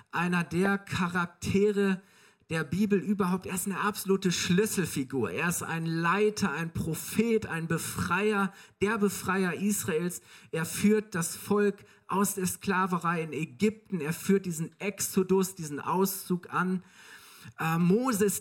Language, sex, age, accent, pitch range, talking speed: German, male, 50-69, German, 155-195 Hz, 130 wpm